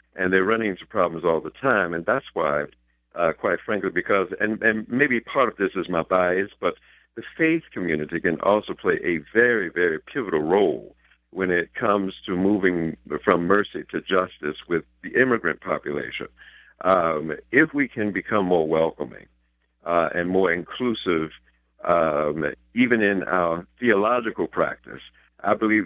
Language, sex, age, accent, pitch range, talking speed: English, male, 60-79, American, 85-105 Hz, 160 wpm